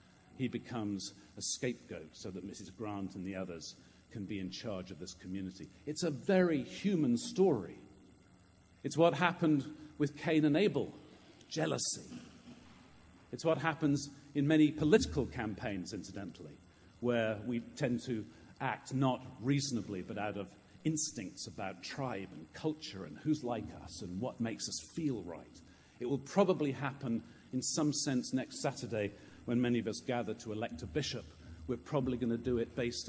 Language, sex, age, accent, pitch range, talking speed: English, male, 50-69, British, 100-145 Hz, 160 wpm